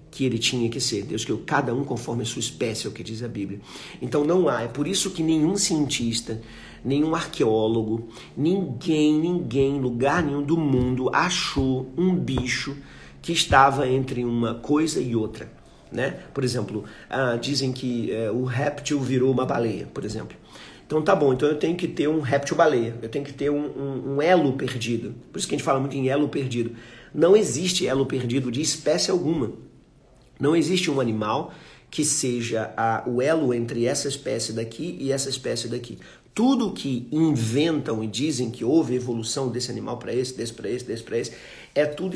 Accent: Brazilian